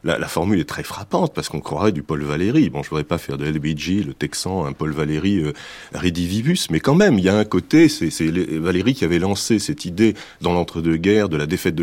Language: French